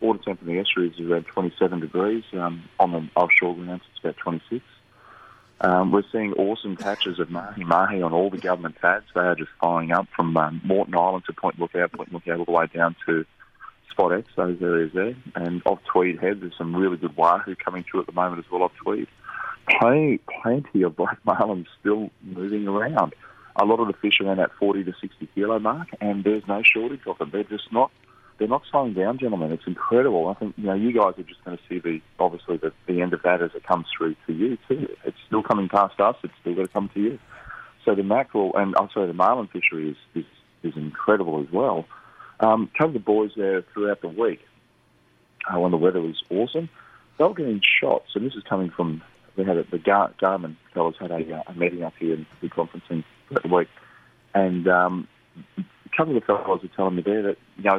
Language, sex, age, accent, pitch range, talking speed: English, male, 30-49, Australian, 85-100 Hz, 225 wpm